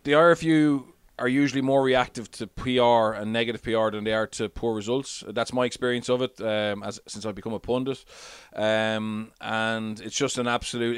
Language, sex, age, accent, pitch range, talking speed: English, male, 20-39, Irish, 110-135 Hz, 190 wpm